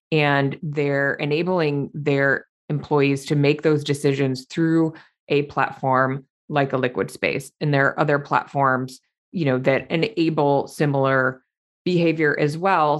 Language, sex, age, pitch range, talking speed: English, female, 20-39, 140-160 Hz, 135 wpm